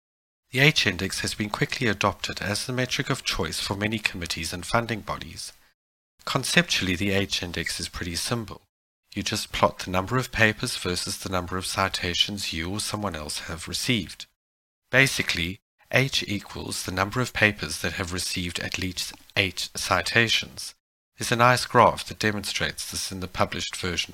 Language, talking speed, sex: English, 165 wpm, male